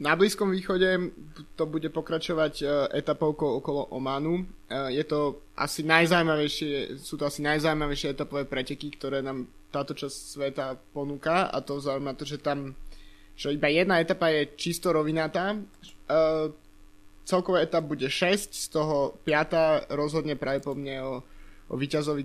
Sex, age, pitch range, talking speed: male, 20-39, 140-165 Hz, 140 wpm